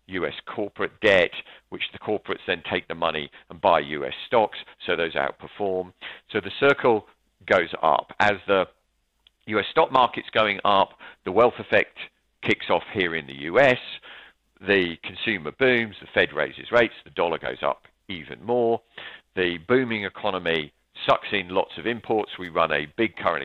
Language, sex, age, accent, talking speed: English, male, 50-69, British, 165 wpm